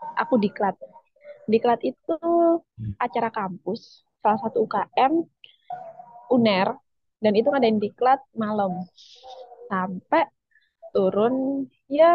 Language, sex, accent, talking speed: Indonesian, female, native, 95 wpm